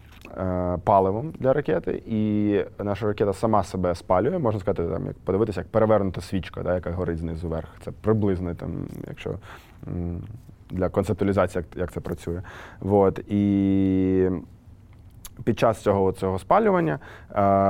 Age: 20-39